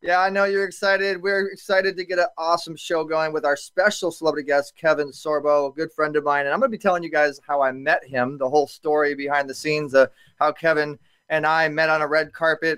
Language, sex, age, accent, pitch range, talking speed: English, male, 30-49, American, 150-185 Hz, 250 wpm